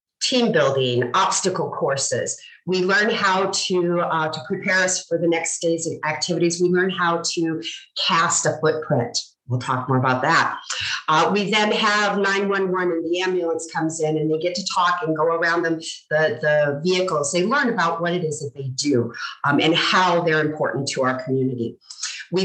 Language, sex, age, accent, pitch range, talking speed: English, female, 50-69, American, 145-180 Hz, 185 wpm